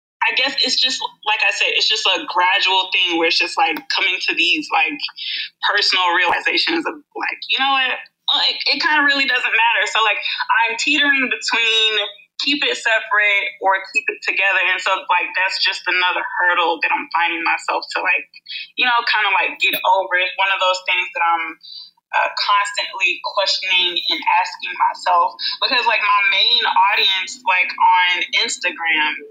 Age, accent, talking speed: 20-39, American, 175 wpm